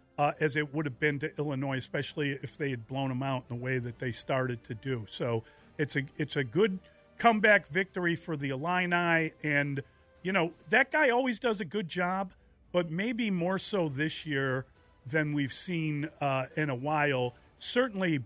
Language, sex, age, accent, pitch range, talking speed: English, male, 40-59, American, 125-165 Hz, 190 wpm